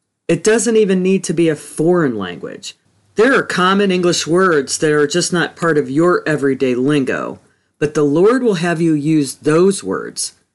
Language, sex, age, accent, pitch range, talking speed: English, female, 40-59, American, 145-190 Hz, 180 wpm